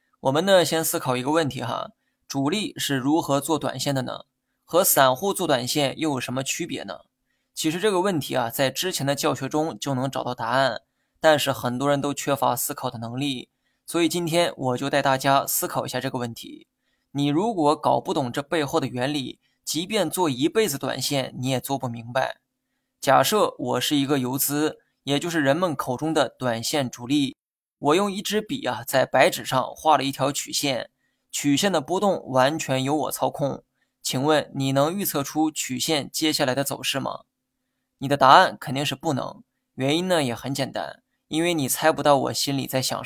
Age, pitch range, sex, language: 20-39, 130-160 Hz, male, Chinese